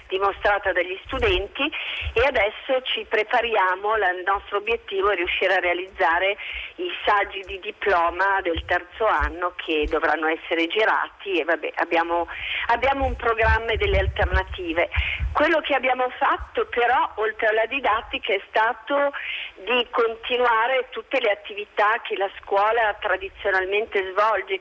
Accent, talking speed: native, 130 wpm